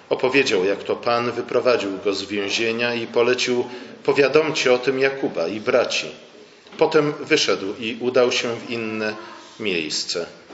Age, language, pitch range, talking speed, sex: 40-59, Polish, 125-160 Hz, 135 wpm, male